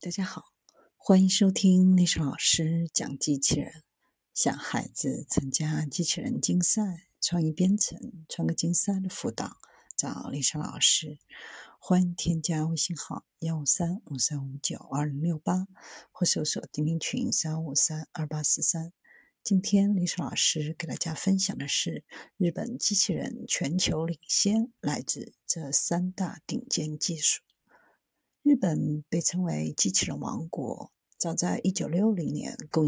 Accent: native